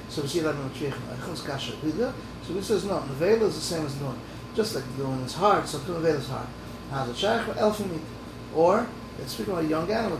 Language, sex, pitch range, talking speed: English, male, 135-175 Hz, 200 wpm